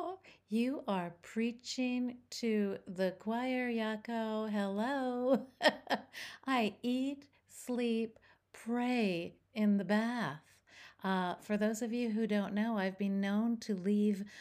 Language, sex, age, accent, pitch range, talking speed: English, female, 50-69, American, 175-240 Hz, 115 wpm